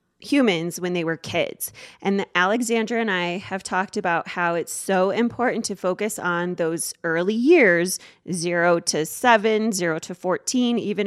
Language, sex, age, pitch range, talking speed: English, female, 20-39, 170-205 Hz, 155 wpm